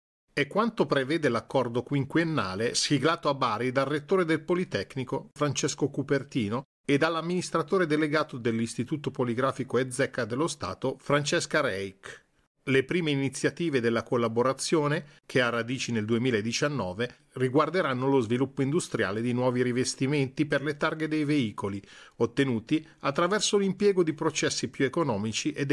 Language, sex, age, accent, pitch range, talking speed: Italian, male, 40-59, native, 120-160 Hz, 125 wpm